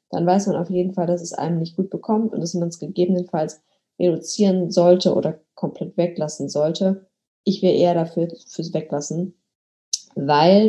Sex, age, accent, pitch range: female, 20-39, German, 175-210 Hz